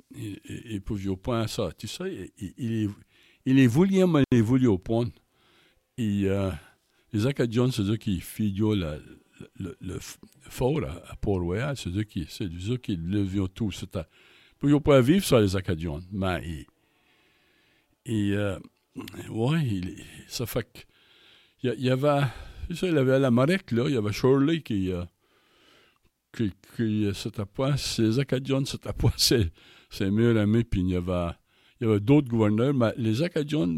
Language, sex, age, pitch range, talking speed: French, male, 60-79, 95-125 Hz, 185 wpm